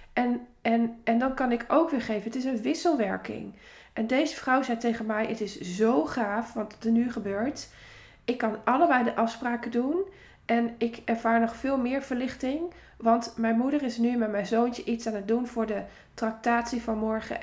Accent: Dutch